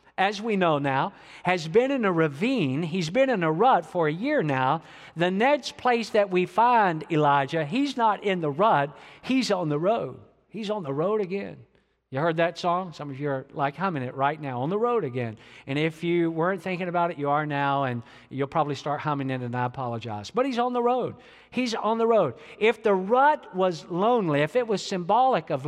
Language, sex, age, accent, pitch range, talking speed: English, male, 50-69, American, 145-210 Hz, 220 wpm